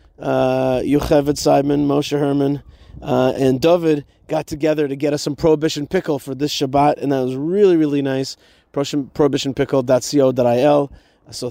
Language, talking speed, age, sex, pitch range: English, 140 wpm, 30-49, male, 125-150 Hz